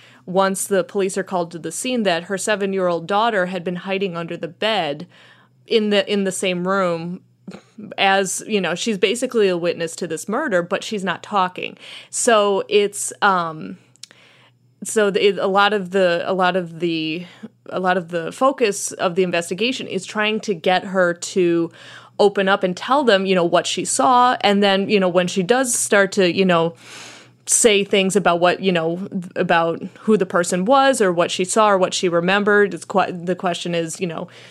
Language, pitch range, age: English, 175-210 Hz, 20-39